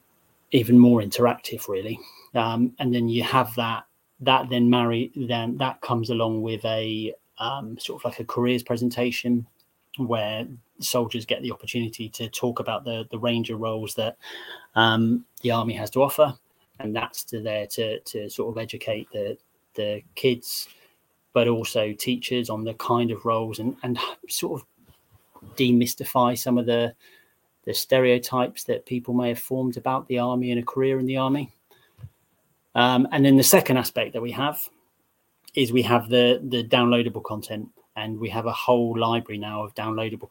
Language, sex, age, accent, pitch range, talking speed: English, male, 30-49, British, 110-125 Hz, 170 wpm